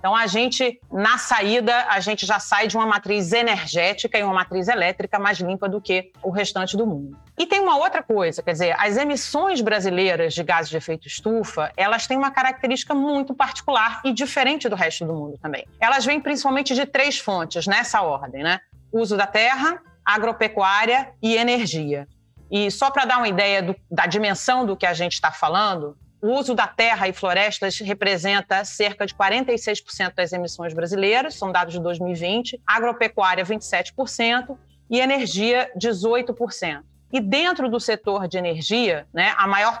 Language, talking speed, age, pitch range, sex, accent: Portuguese, 170 wpm, 40-59, 185-245 Hz, female, Brazilian